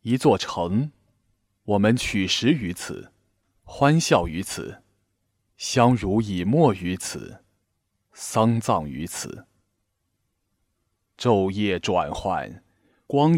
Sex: male